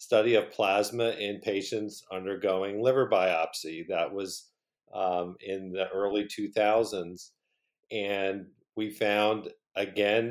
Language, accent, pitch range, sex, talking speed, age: English, American, 95-110 Hz, male, 110 wpm, 50-69